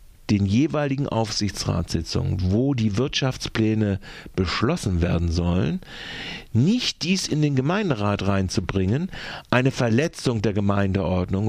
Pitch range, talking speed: 95-130 Hz, 100 wpm